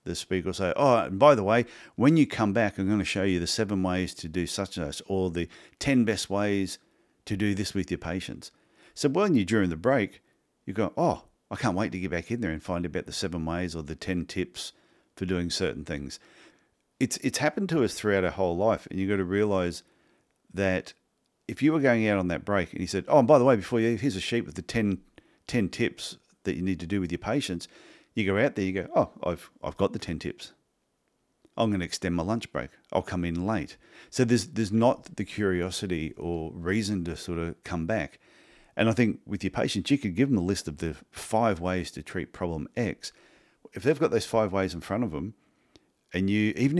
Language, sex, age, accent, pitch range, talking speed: English, male, 50-69, Australian, 90-110 Hz, 240 wpm